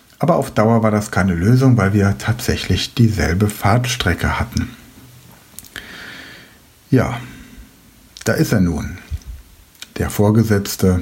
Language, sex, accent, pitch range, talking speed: German, male, German, 95-115 Hz, 110 wpm